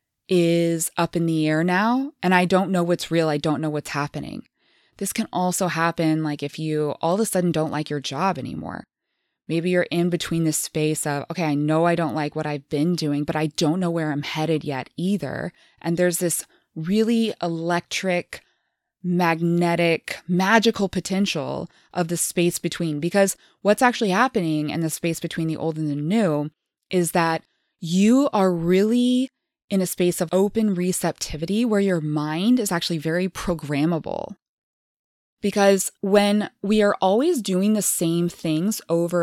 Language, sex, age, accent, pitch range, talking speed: English, female, 20-39, American, 160-195 Hz, 170 wpm